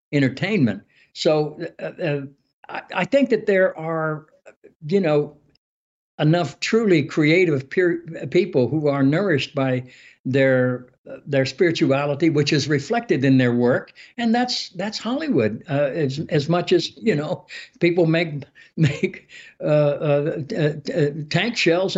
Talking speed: 135 wpm